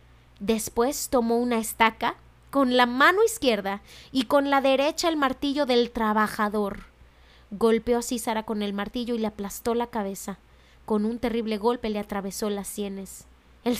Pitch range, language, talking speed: 200-260 Hz, Spanish, 155 wpm